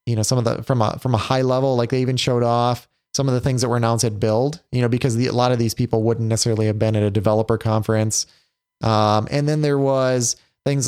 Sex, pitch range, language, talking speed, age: male, 115-135 Hz, English, 265 wpm, 20-39